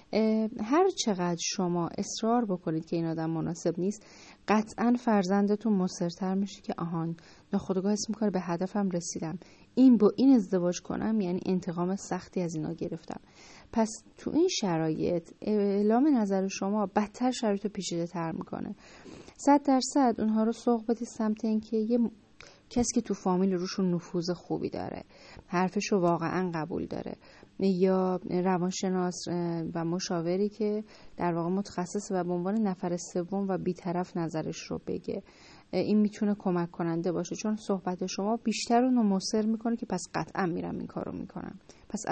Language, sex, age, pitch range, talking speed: Persian, female, 30-49, 180-220 Hz, 150 wpm